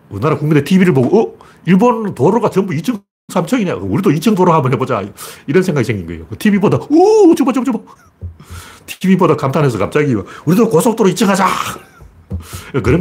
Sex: male